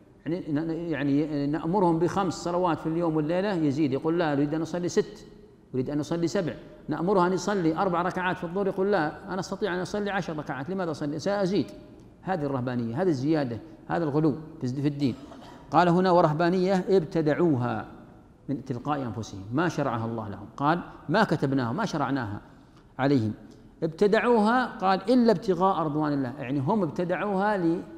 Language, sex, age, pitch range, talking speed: Arabic, male, 50-69, 135-175 Hz, 155 wpm